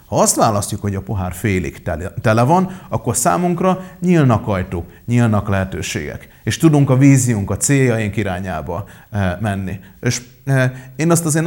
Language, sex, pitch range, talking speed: Hungarian, male, 100-135 Hz, 140 wpm